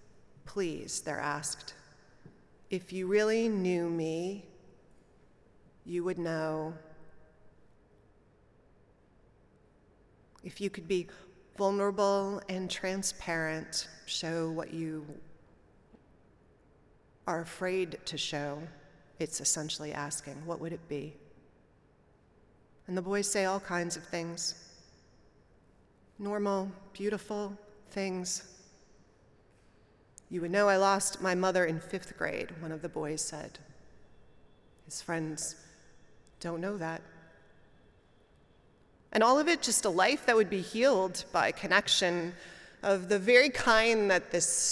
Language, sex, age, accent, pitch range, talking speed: English, female, 30-49, American, 160-195 Hz, 110 wpm